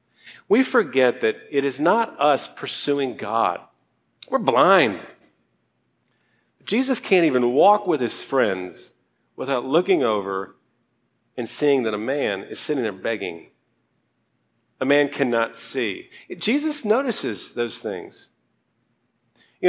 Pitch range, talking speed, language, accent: 120-185 Hz, 120 wpm, English, American